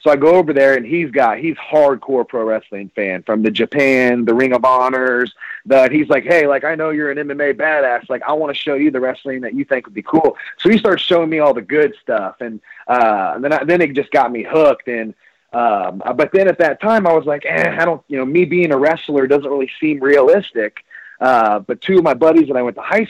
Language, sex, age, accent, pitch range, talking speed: English, male, 30-49, American, 125-160 Hz, 255 wpm